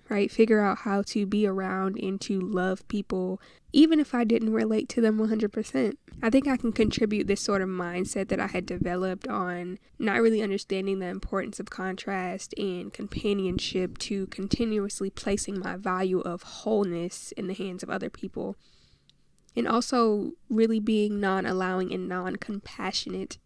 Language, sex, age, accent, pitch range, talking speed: English, female, 10-29, American, 190-220 Hz, 160 wpm